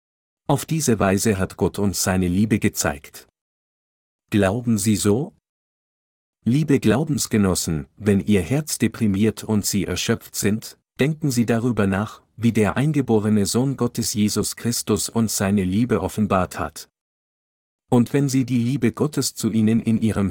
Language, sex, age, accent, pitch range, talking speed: German, male, 50-69, German, 100-115 Hz, 140 wpm